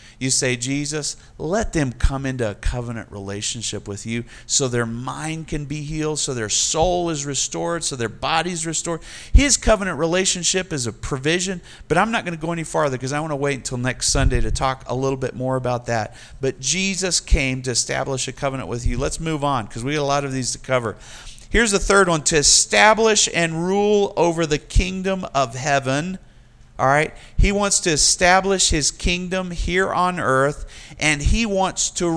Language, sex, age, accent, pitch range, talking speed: English, male, 40-59, American, 125-170 Hz, 195 wpm